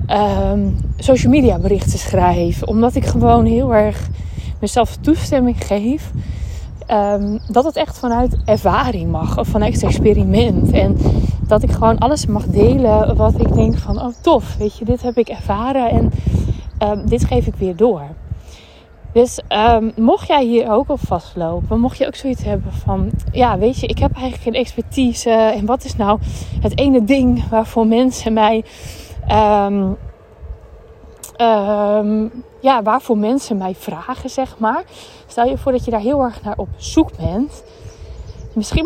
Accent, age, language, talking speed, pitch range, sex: Dutch, 20-39, Dutch, 160 wpm, 185-250 Hz, female